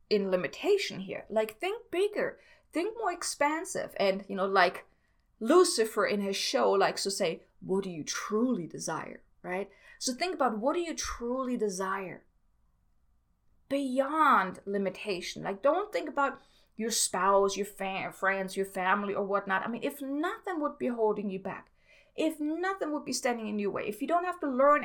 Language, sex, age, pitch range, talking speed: English, female, 20-39, 200-310 Hz, 175 wpm